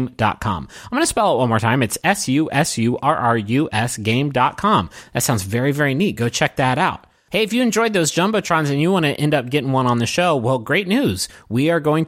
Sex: male